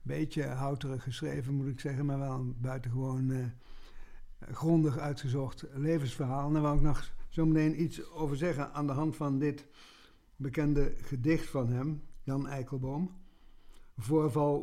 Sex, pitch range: male, 130-150 Hz